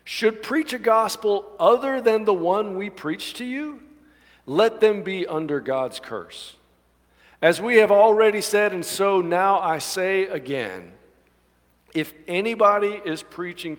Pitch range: 120-195 Hz